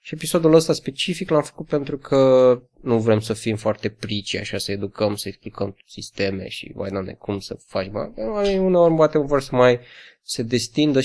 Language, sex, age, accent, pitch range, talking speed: Romanian, male, 20-39, native, 110-140 Hz, 180 wpm